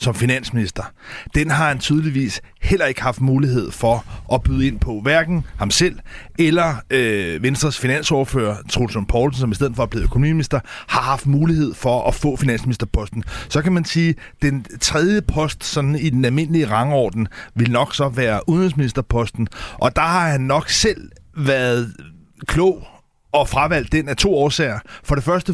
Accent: native